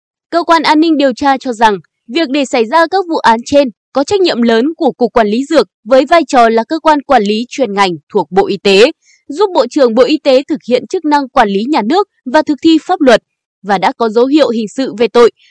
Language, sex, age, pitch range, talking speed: Vietnamese, female, 20-39, 230-315 Hz, 260 wpm